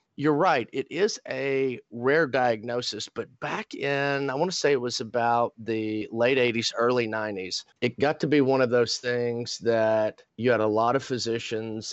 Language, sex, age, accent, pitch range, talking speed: English, male, 40-59, American, 115-135 Hz, 185 wpm